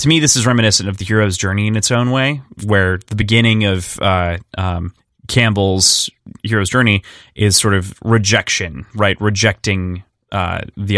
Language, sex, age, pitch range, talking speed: English, male, 20-39, 95-120 Hz, 165 wpm